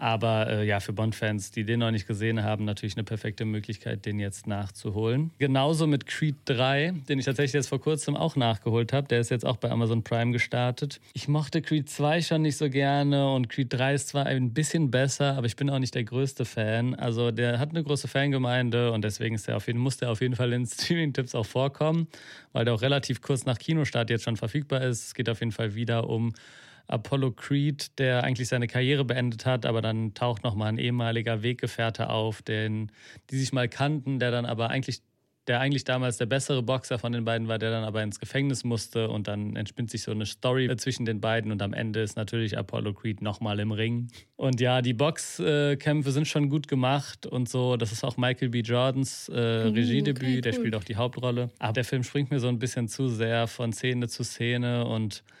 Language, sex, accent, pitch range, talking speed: German, male, German, 115-135 Hz, 215 wpm